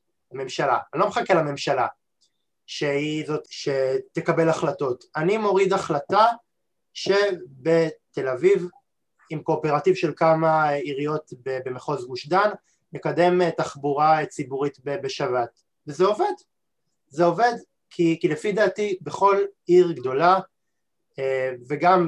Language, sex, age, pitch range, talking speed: Hebrew, male, 20-39, 145-185 Hz, 100 wpm